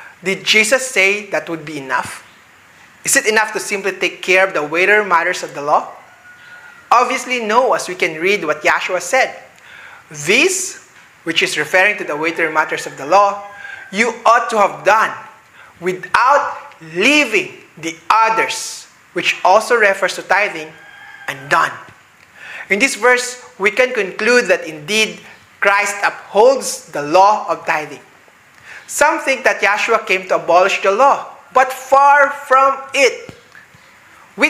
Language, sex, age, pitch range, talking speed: English, male, 20-39, 185-280 Hz, 145 wpm